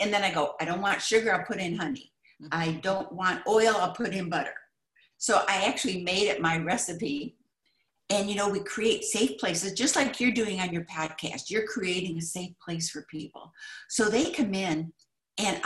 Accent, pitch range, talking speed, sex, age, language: American, 170-220 Hz, 205 wpm, female, 60-79, English